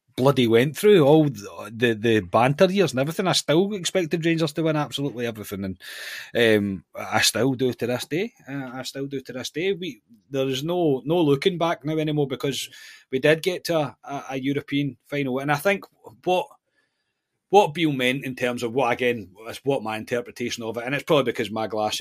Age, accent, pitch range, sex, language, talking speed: 30-49, British, 105-135 Hz, male, English, 200 wpm